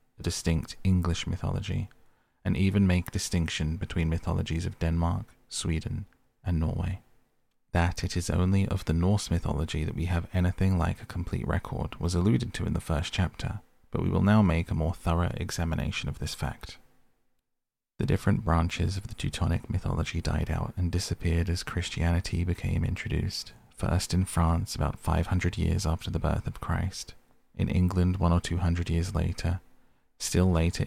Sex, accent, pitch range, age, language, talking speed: male, British, 85-95 Hz, 30-49, English, 165 wpm